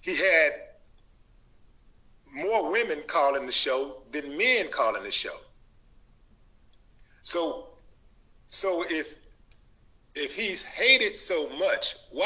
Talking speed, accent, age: 105 wpm, American, 40-59